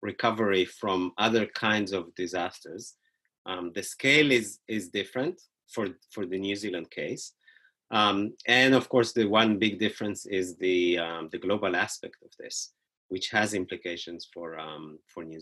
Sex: male